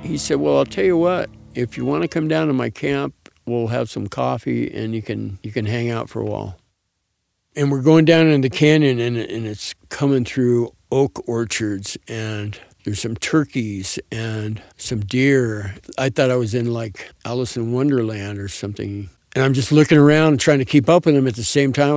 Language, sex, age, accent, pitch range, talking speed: English, male, 60-79, American, 110-140 Hz, 215 wpm